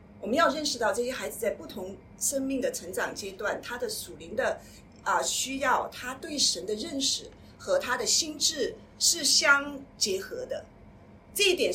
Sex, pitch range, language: female, 235-365 Hz, Chinese